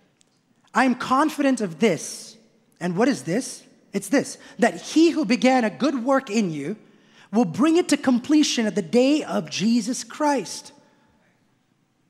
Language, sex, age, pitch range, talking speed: English, male, 30-49, 225-285 Hz, 155 wpm